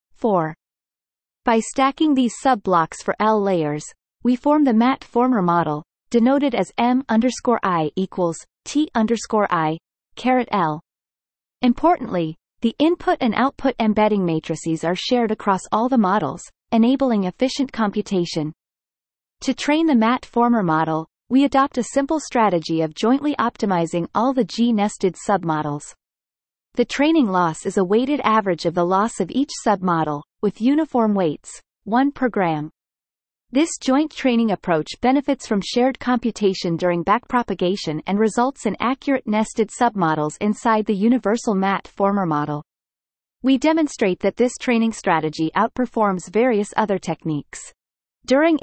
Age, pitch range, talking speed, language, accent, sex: 30-49, 180-250 Hz, 130 wpm, English, American, female